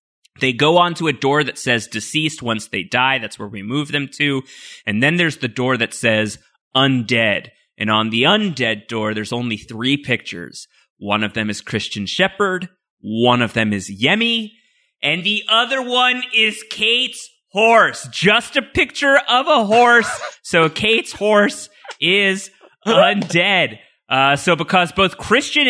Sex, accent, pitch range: male, American, 125-195 Hz